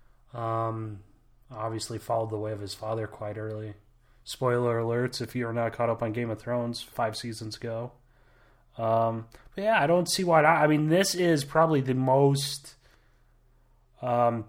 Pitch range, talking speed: 115-140 Hz, 155 wpm